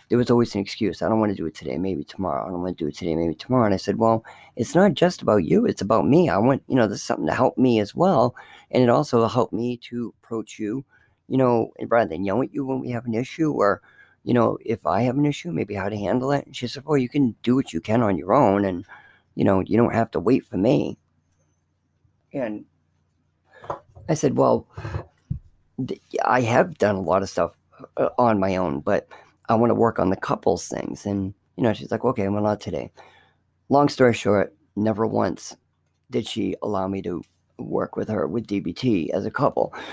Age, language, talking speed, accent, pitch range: 50-69, English, 230 wpm, American, 95-120 Hz